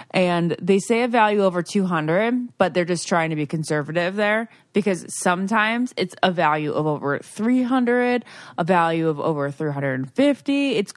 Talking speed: 160 wpm